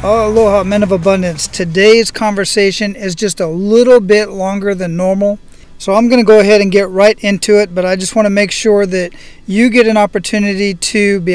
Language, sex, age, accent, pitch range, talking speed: English, male, 40-59, American, 185-210 Hz, 205 wpm